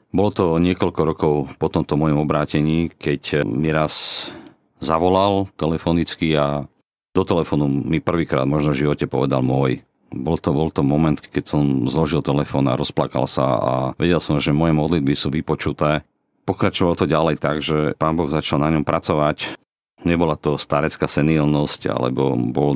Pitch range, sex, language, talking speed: 70-80 Hz, male, Slovak, 160 wpm